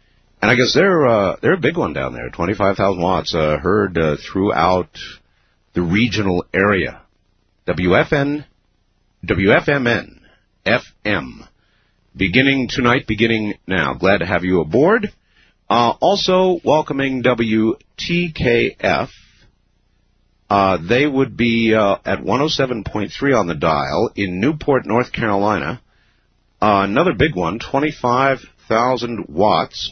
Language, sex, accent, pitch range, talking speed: English, male, American, 90-130 Hz, 115 wpm